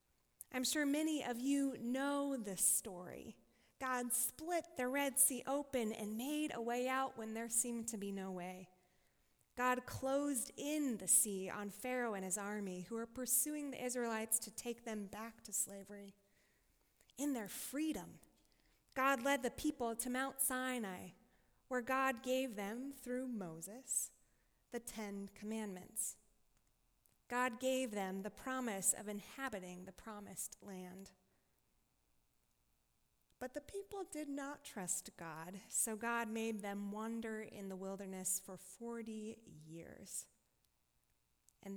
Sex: female